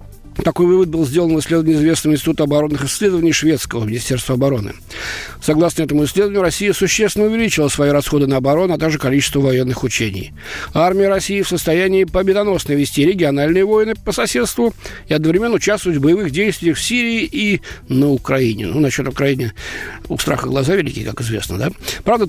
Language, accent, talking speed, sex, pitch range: Russian, native, 160 wpm, male, 130-190 Hz